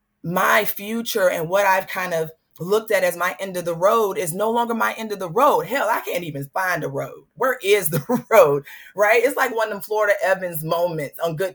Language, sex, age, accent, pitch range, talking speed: English, female, 30-49, American, 160-230 Hz, 235 wpm